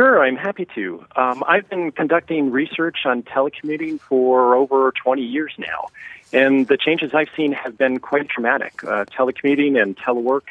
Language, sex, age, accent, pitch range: Korean, male, 40-59, American, 125-155 Hz